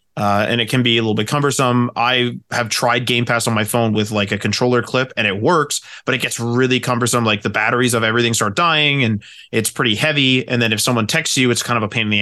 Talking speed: 265 wpm